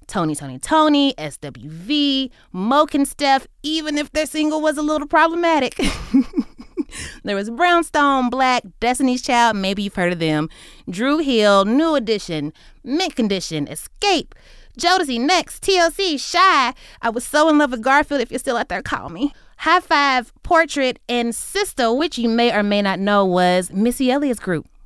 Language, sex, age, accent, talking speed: English, female, 30-49, American, 160 wpm